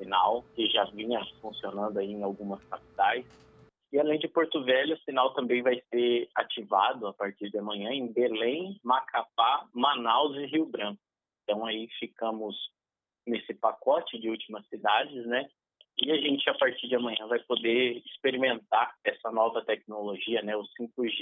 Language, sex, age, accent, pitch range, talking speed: Portuguese, male, 20-39, Brazilian, 105-145 Hz, 155 wpm